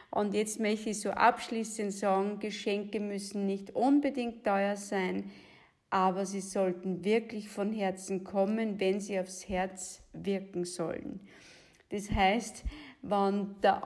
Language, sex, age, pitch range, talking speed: German, female, 50-69, 190-225 Hz, 130 wpm